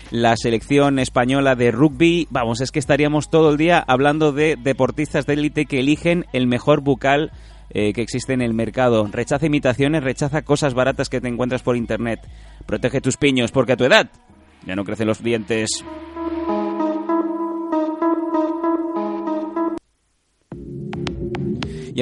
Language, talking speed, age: Spanish, 140 wpm, 30-49